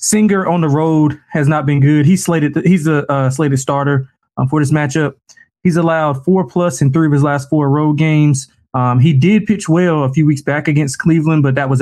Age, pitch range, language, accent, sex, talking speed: 20-39, 135-160 Hz, English, American, male, 235 wpm